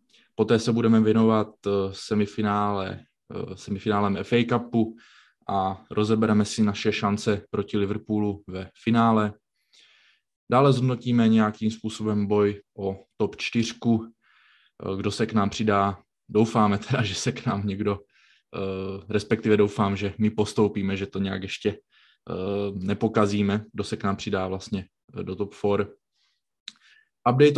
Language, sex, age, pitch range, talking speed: Czech, male, 20-39, 100-115 Hz, 125 wpm